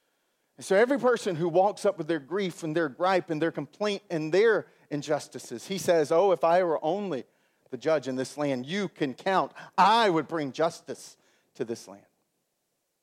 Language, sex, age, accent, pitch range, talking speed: English, male, 40-59, American, 160-250 Hz, 185 wpm